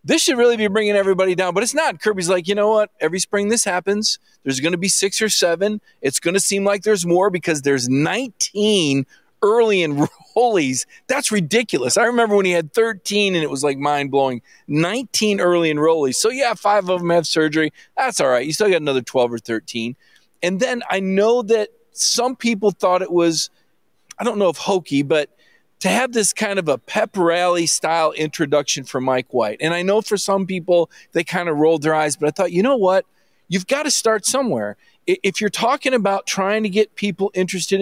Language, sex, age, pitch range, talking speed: English, male, 40-59, 155-210 Hz, 210 wpm